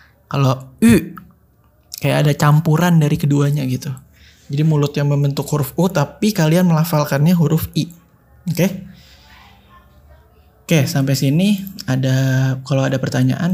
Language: Indonesian